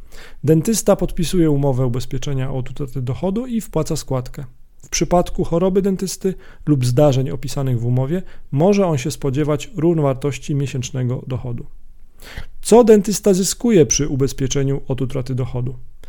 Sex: male